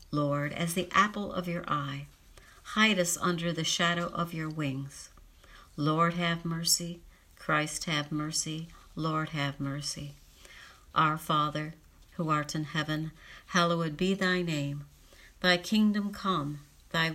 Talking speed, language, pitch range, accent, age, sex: 135 wpm, English, 145-180 Hz, American, 60-79, female